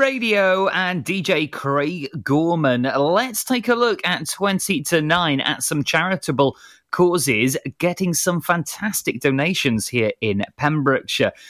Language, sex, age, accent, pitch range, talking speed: English, male, 30-49, British, 125-170 Hz, 125 wpm